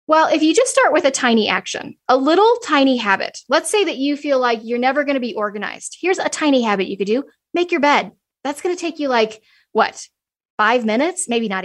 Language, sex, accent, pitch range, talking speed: English, female, American, 220-310 Hz, 235 wpm